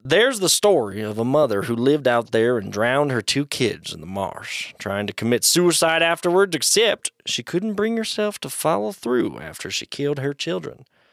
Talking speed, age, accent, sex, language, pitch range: 195 wpm, 20-39, American, male, English, 115-165 Hz